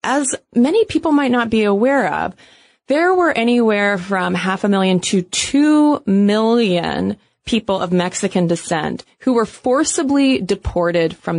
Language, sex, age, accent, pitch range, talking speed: English, female, 20-39, American, 170-220 Hz, 140 wpm